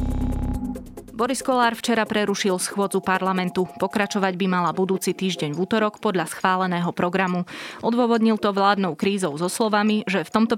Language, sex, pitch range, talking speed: Slovak, female, 170-210 Hz, 140 wpm